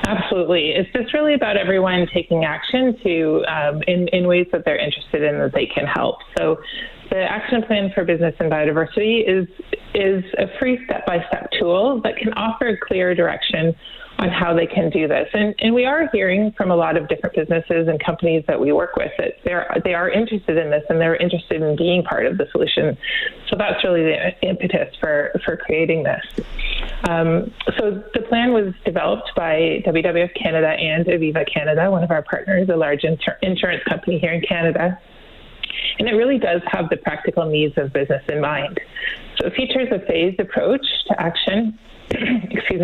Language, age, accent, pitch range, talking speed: English, 30-49, American, 170-220 Hz, 190 wpm